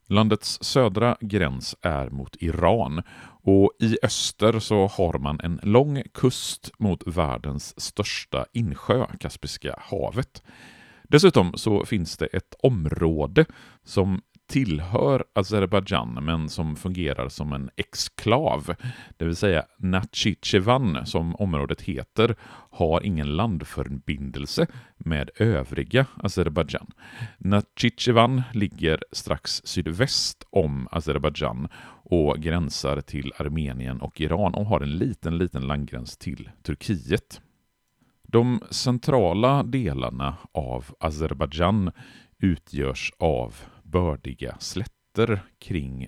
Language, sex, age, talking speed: Swedish, male, 40-59, 105 wpm